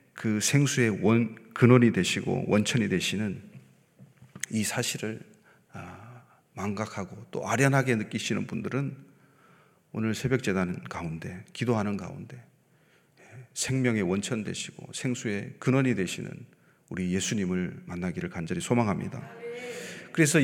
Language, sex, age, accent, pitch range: Korean, male, 40-59, native, 115-160 Hz